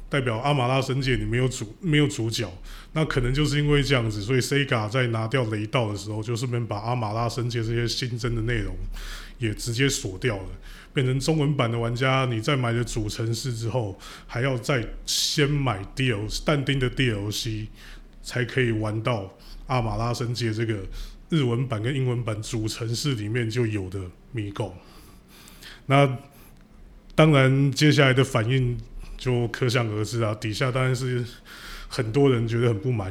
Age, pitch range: 20-39, 115-140 Hz